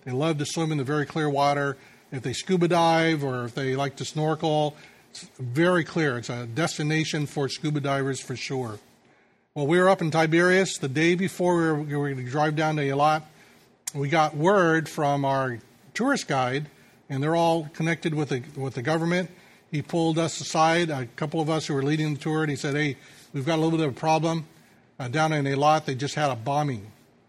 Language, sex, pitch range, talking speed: English, male, 135-165 Hz, 215 wpm